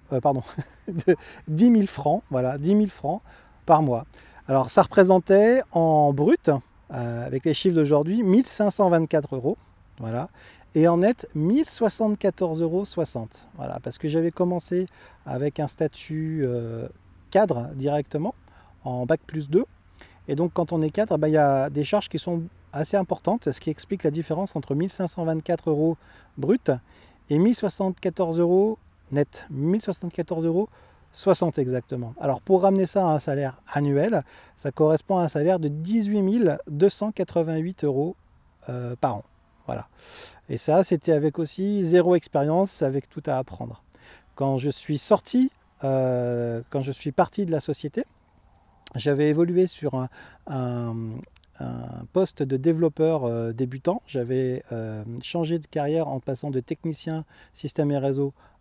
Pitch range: 130-180 Hz